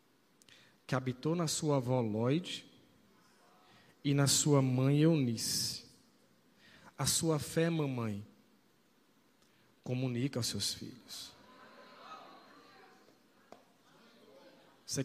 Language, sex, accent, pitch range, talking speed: Portuguese, male, Brazilian, 140-190 Hz, 80 wpm